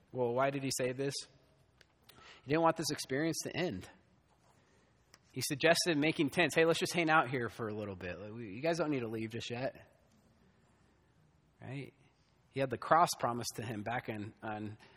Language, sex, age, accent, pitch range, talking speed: English, male, 30-49, American, 100-140 Hz, 185 wpm